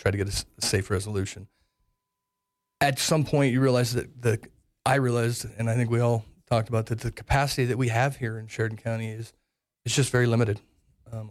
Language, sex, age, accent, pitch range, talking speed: English, male, 40-59, American, 105-120 Hz, 200 wpm